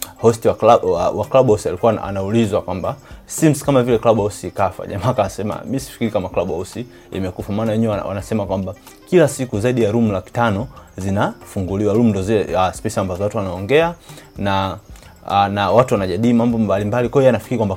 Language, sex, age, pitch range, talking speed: Swahili, male, 30-49, 95-120 Hz, 150 wpm